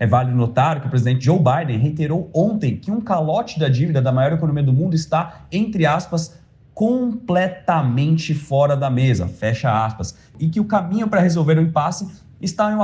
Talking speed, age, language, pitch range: 185 wpm, 30-49, Portuguese, 145-200 Hz